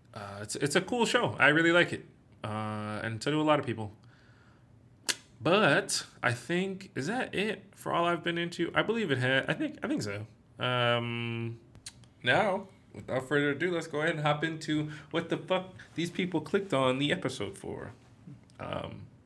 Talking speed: 185 wpm